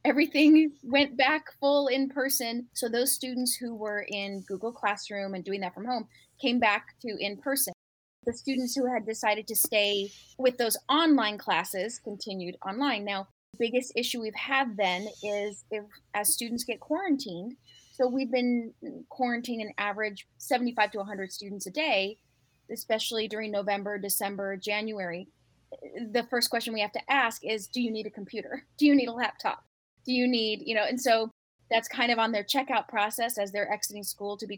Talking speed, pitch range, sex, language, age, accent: 180 wpm, 205-250 Hz, female, English, 20-39, American